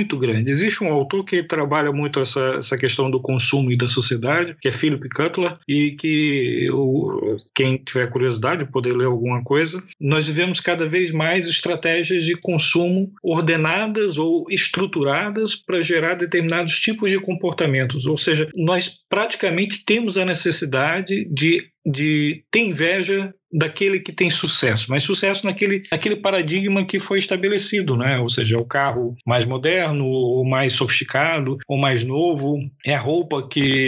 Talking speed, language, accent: 155 wpm, Portuguese, Brazilian